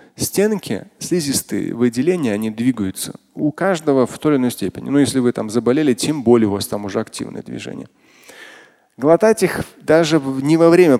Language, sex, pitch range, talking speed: Russian, male, 120-165 Hz, 170 wpm